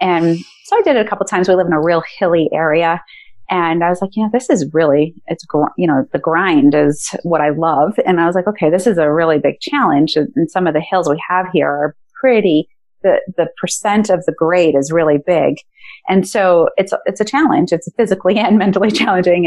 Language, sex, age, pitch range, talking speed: English, female, 30-49, 170-215 Hz, 235 wpm